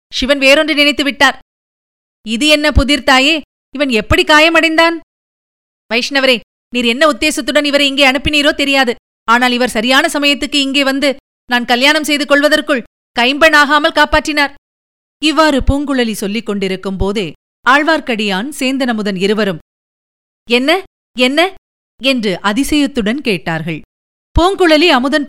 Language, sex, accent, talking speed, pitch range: Tamil, female, native, 105 wpm, 245-300 Hz